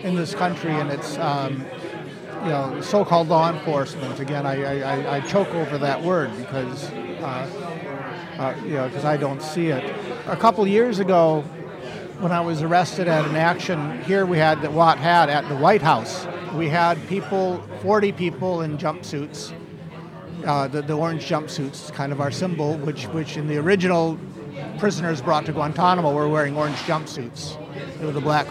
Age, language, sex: 50-69, English, male